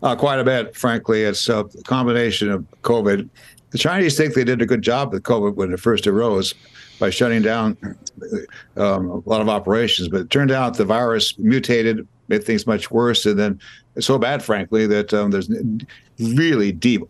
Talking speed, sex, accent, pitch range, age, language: 195 wpm, male, American, 110-130 Hz, 60-79, English